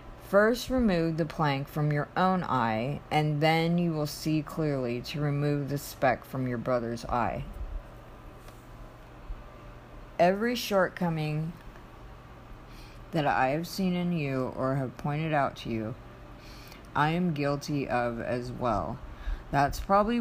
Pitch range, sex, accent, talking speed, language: 130-165 Hz, female, American, 130 wpm, English